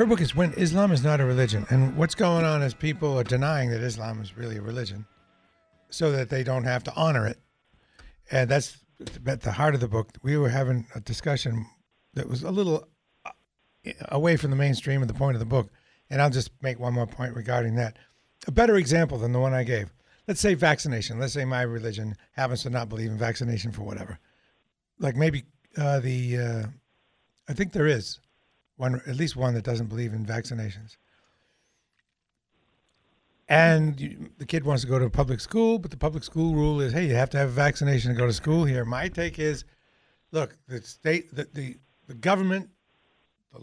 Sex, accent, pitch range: male, American, 120-155 Hz